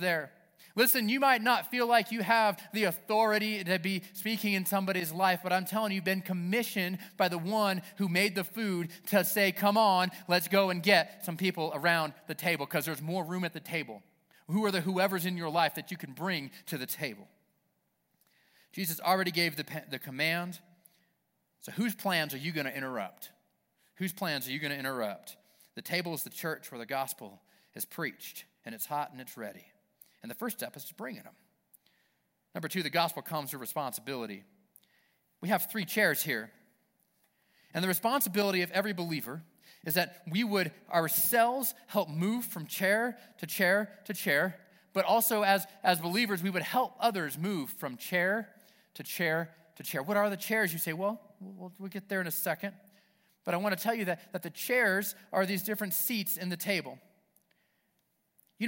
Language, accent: English, American